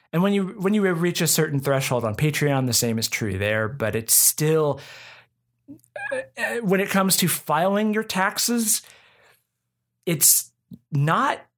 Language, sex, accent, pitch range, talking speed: English, male, American, 135-195 Hz, 145 wpm